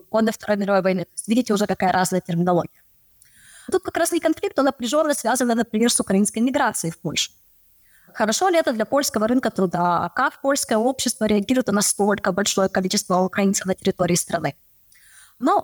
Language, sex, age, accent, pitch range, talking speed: Russian, female, 20-39, native, 200-265 Hz, 165 wpm